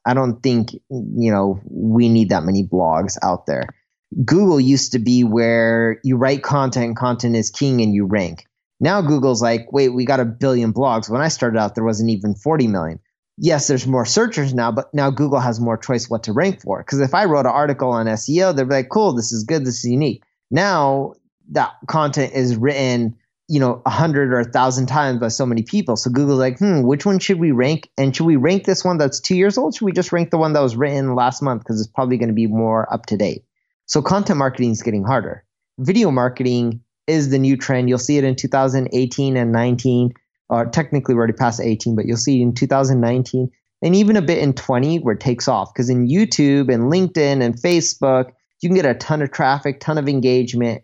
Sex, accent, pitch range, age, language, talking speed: male, American, 115-145 Hz, 30-49, English, 225 wpm